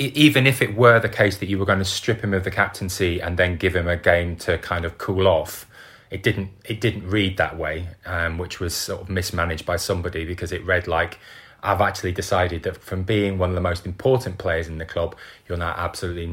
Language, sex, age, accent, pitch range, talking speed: English, male, 20-39, British, 85-100 Hz, 235 wpm